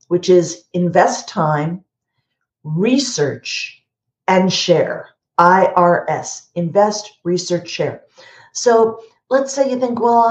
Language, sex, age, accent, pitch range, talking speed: English, female, 50-69, American, 170-220 Hz, 100 wpm